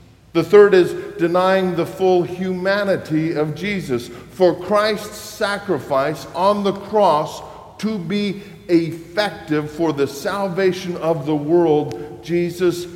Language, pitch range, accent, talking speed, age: English, 120-175 Hz, American, 115 wpm, 50-69